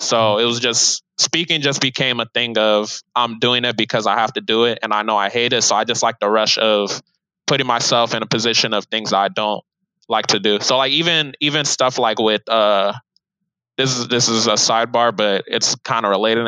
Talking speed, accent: 235 wpm, American